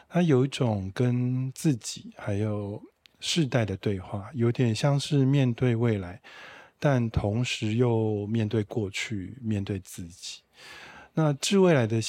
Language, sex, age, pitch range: Chinese, male, 20-39, 105-125 Hz